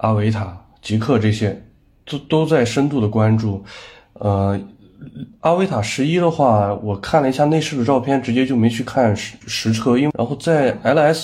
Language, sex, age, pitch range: Chinese, male, 20-39, 105-135 Hz